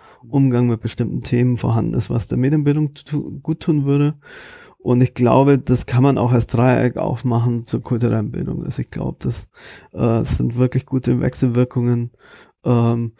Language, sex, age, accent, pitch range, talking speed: German, male, 40-59, German, 115-130 Hz, 160 wpm